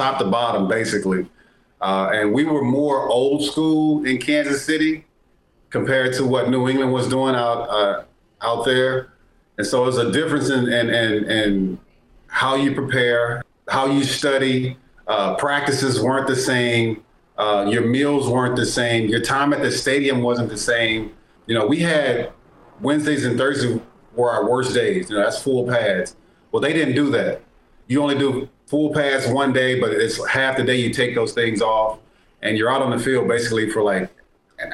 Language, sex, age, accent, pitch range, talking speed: English, male, 30-49, American, 110-135 Hz, 185 wpm